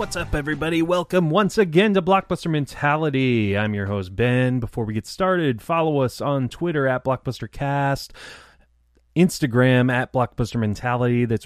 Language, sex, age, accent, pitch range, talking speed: English, male, 30-49, American, 105-135 Hz, 150 wpm